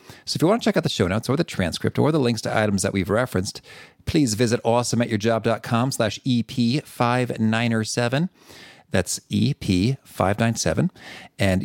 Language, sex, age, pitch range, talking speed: English, male, 40-59, 100-130 Hz, 150 wpm